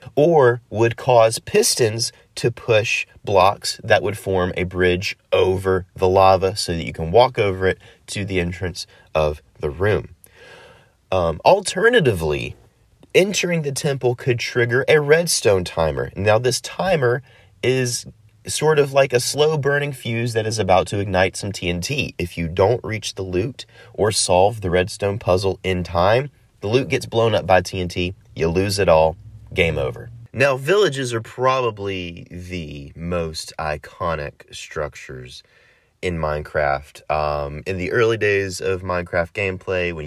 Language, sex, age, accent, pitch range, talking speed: English, male, 30-49, American, 90-125 Hz, 150 wpm